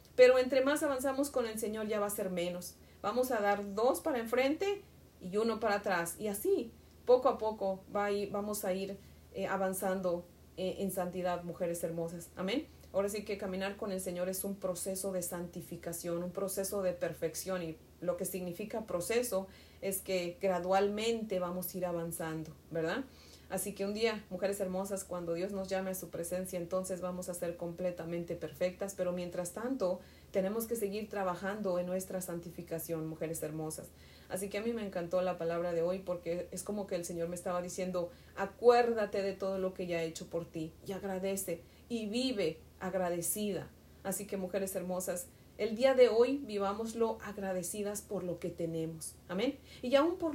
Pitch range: 175-205 Hz